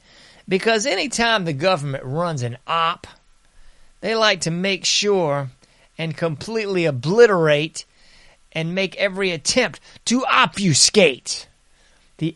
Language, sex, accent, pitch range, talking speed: English, male, American, 135-190 Hz, 110 wpm